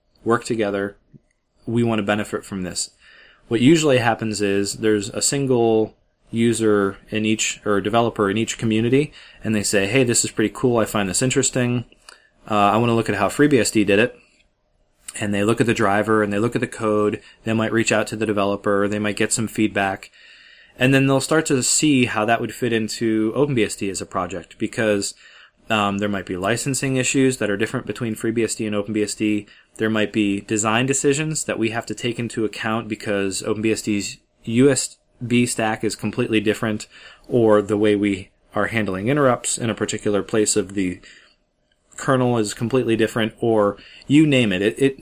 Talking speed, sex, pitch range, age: 185 wpm, male, 105-120 Hz, 20-39